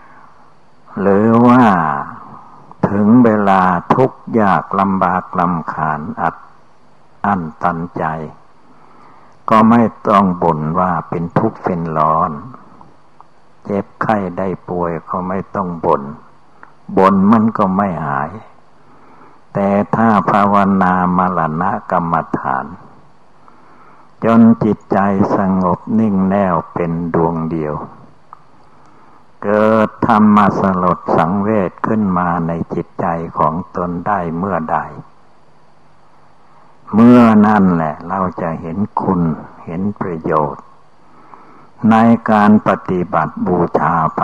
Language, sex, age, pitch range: Thai, male, 60-79, 85-105 Hz